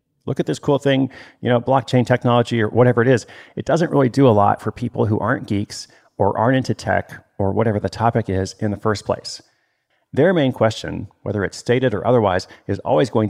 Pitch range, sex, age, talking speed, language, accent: 100-125 Hz, male, 40-59, 215 wpm, English, American